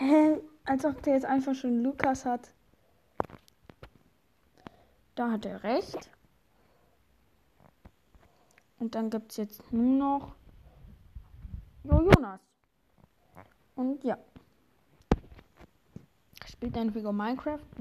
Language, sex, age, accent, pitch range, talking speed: German, female, 20-39, German, 215-265 Hz, 90 wpm